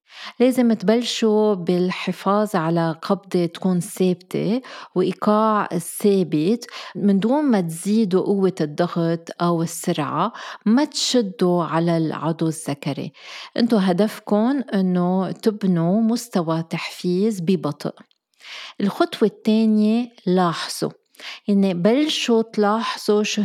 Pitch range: 175-220 Hz